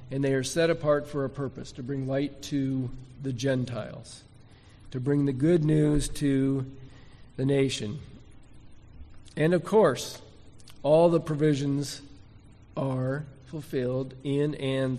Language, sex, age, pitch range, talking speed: English, male, 50-69, 120-145 Hz, 130 wpm